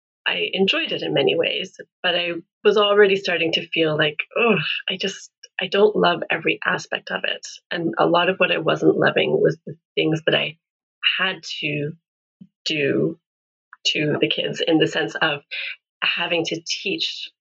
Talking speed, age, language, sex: 170 wpm, 30-49, English, female